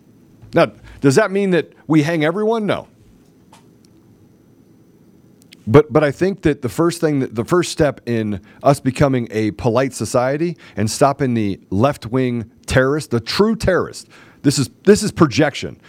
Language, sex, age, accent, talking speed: English, male, 40-59, American, 150 wpm